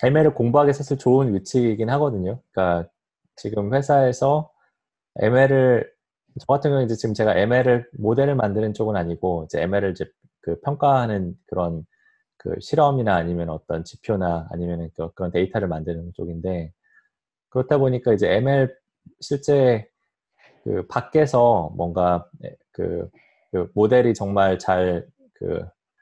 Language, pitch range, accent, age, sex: Korean, 85-125 Hz, native, 20-39, male